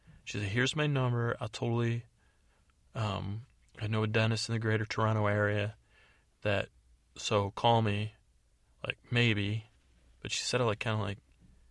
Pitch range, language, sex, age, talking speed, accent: 100-115 Hz, English, male, 30-49, 160 wpm, American